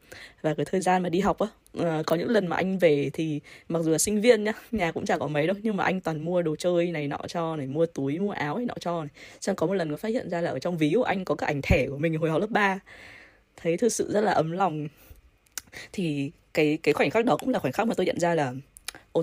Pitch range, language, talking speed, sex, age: 155-200 Hz, Vietnamese, 290 wpm, female, 20-39